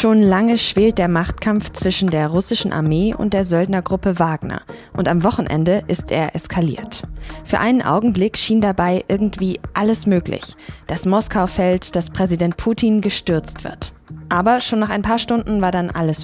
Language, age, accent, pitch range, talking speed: German, 20-39, German, 165-205 Hz, 165 wpm